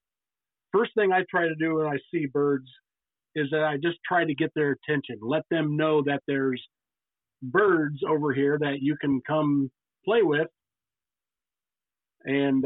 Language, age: English, 50-69